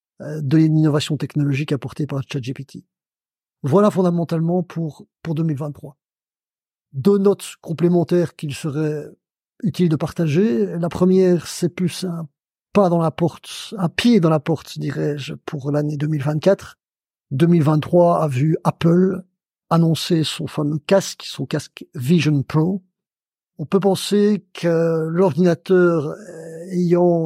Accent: French